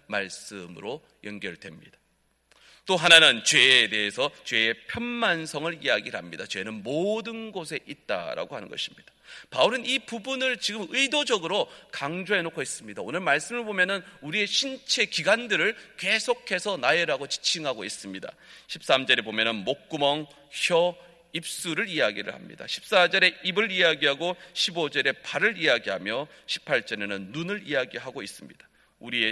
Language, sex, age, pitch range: Korean, male, 40-59, 130-200 Hz